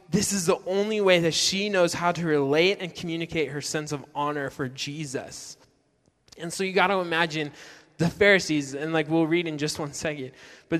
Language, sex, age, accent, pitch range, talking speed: English, male, 10-29, American, 150-185 Hz, 200 wpm